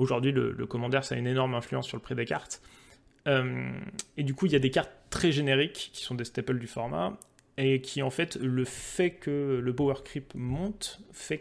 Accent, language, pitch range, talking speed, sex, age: French, French, 130-160 Hz, 225 wpm, male, 20-39